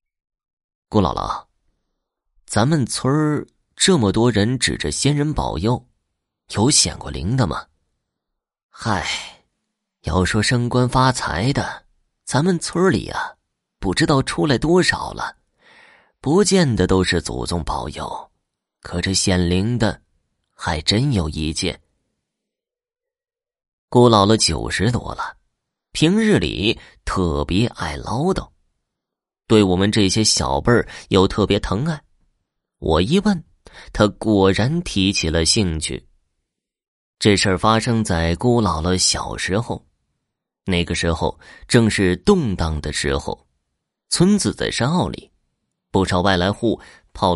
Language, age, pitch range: Chinese, 30-49, 90-130 Hz